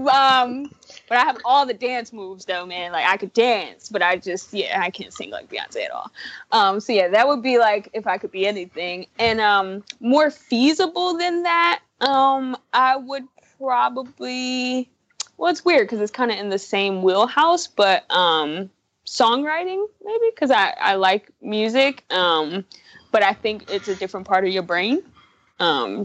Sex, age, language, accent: female, 20-39, English, American